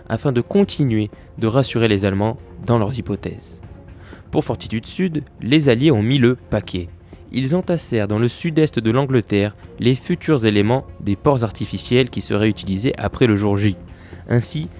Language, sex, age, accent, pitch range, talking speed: French, male, 20-39, French, 100-135 Hz, 160 wpm